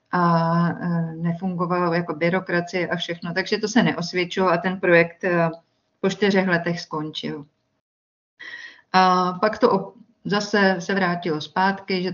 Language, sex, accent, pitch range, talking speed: Czech, female, native, 170-190 Hz, 125 wpm